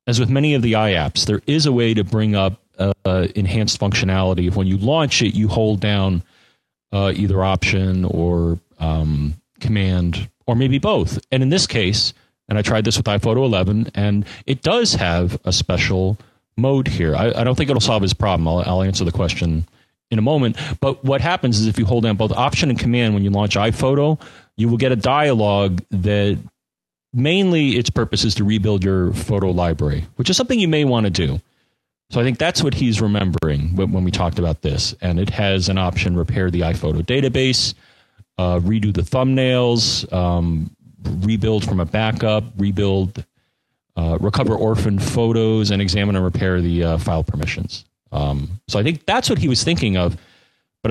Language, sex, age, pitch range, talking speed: English, male, 30-49, 95-120 Hz, 190 wpm